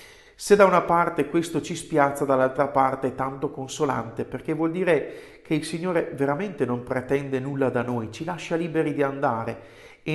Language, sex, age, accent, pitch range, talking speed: Italian, male, 50-69, native, 130-160 Hz, 175 wpm